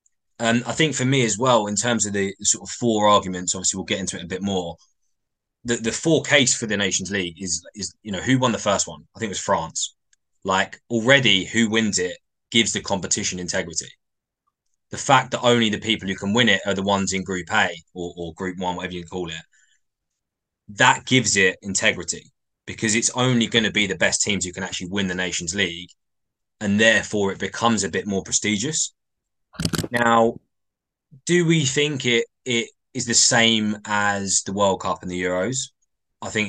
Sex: male